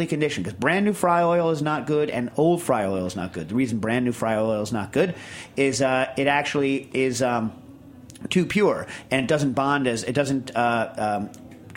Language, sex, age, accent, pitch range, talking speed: English, male, 40-59, American, 120-150 Hz, 215 wpm